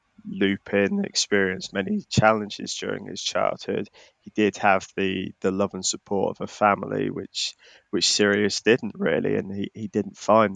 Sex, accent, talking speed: male, British, 160 wpm